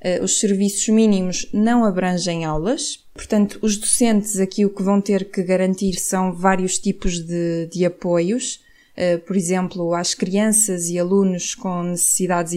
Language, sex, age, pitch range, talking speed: Portuguese, female, 20-39, 180-215 Hz, 145 wpm